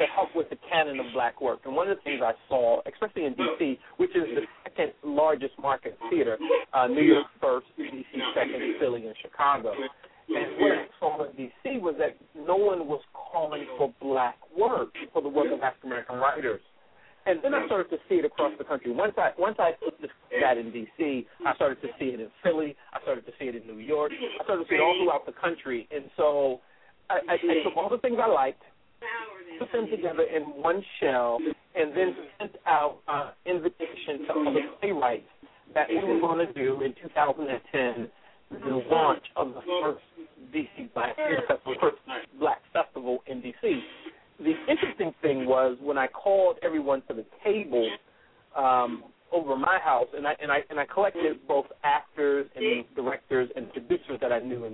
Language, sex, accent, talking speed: English, male, American, 195 wpm